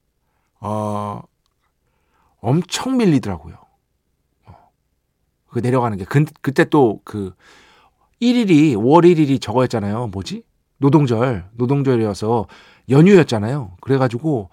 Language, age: Korean, 40-59